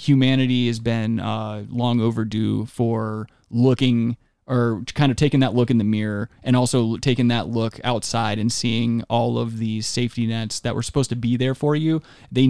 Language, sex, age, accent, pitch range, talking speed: English, male, 20-39, American, 115-125 Hz, 185 wpm